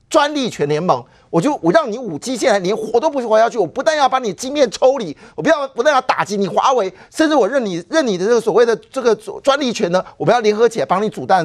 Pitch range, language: 195-290 Hz, Chinese